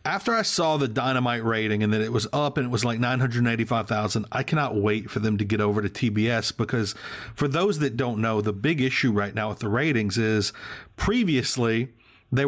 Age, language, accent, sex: 40-59, English, American, male